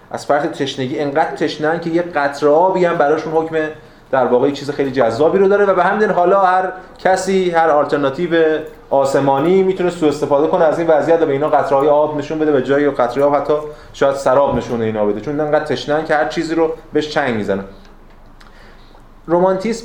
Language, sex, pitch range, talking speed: Persian, male, 130-170 Hz, 200 wpm